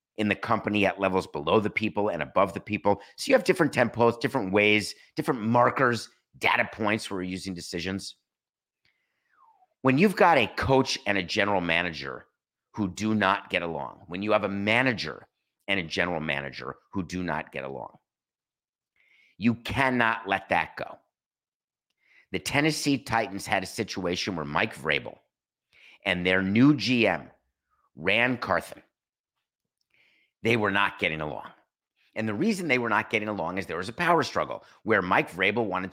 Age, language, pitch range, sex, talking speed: 50-69, English, 95-120 Hz, male, 165 wpm